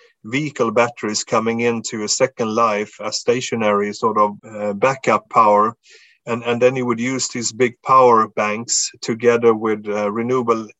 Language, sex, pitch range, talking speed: English, male, 110-125 Hz, 155 wpm